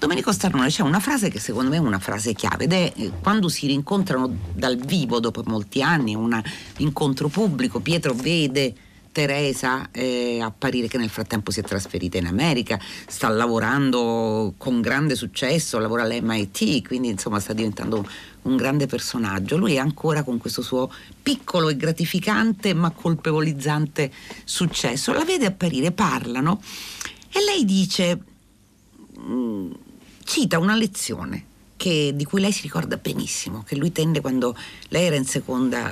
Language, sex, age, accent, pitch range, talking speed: Italian, female, 40-59, native, 120-170 Hz, 150 wpm